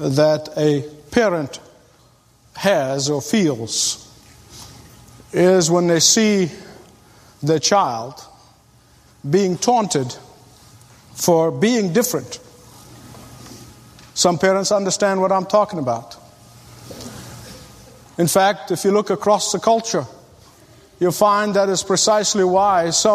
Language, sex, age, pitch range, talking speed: English, male, 50-69, 150-220 Hz, 100 wpm